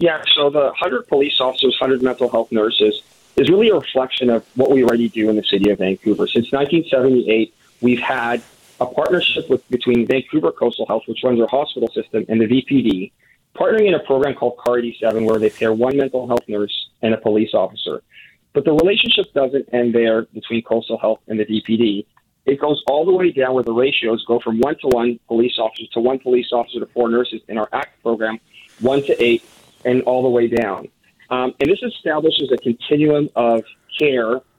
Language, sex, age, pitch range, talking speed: English, male, 40-59, 115-140 Hz, 200 wpm